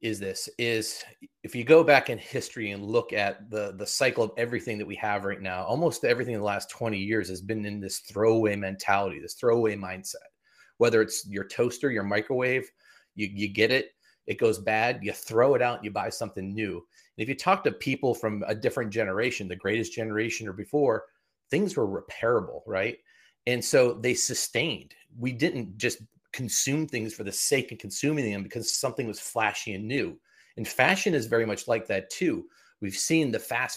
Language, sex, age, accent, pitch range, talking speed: English, male, 30-49, American, 105-140 Hz, 195 wpm